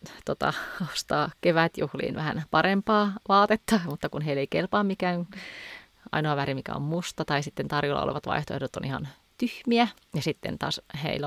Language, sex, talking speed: Finnish, female, 155 wpm